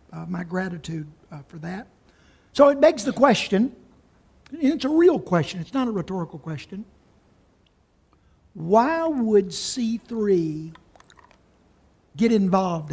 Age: 60-79